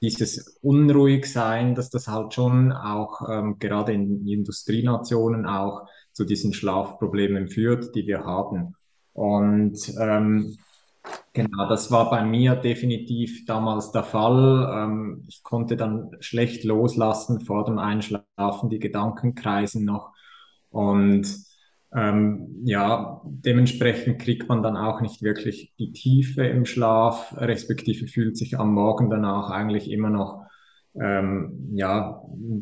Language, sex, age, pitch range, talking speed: German, male, 20-39, 105-120 Hz, 125 wpm